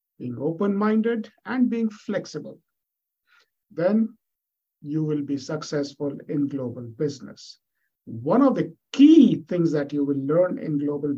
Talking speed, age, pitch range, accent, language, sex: 130 wpm, 50-69, 145-200 Hz, Indian, English, male